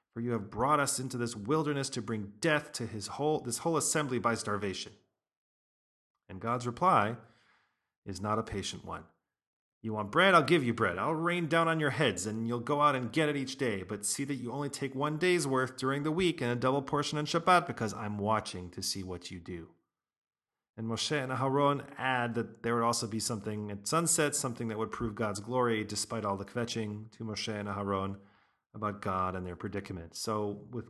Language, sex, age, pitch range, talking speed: English, male, 40-59, 105-140 Hz, 210 wpm